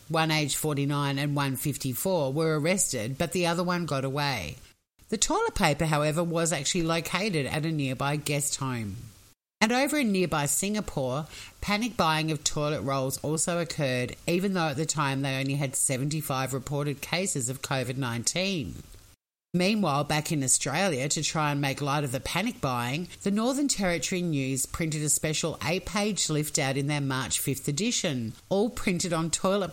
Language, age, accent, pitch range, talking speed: English, 50-69, Australian, 140-185 Hz, 170 wpm